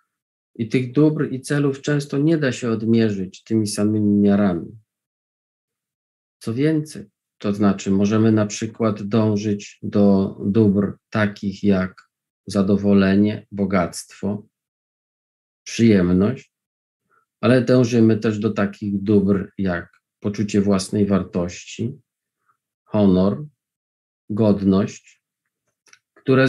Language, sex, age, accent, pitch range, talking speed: Polish, male, 40-59, native, 100-115 Hz, 95 wpm